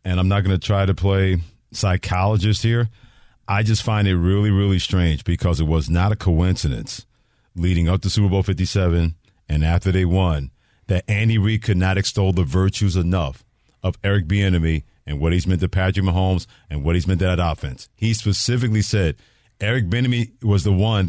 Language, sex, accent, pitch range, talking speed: English, male, American, 95-125 Hz, 190 wpm